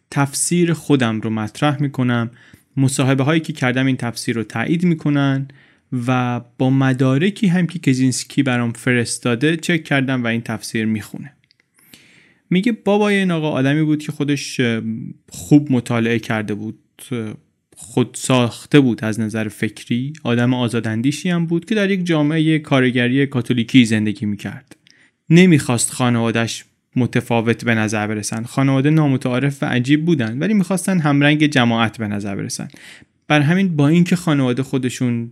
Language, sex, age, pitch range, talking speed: Persian, male, 30-49, 120-150 Hz, 140 wpm